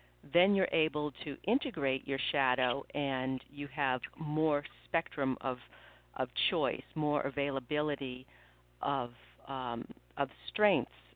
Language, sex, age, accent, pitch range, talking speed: English, female, 50-69, American, 125-170 Hz, 115 wpm